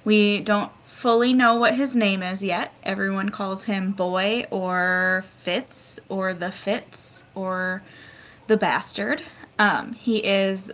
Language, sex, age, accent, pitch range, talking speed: English, female, 20-39, American, 175-205 Hz, 135 wpm